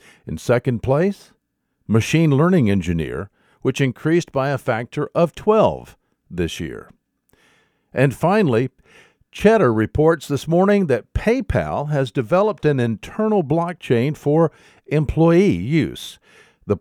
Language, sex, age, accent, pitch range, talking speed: English, male, 50-69, American, 110-155 Hz, 115 wpm